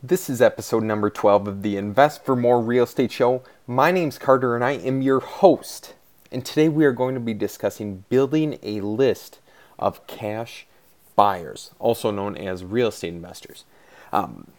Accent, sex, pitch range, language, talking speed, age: American, male, 105-130 Hz, English, 175 wpm, 30-49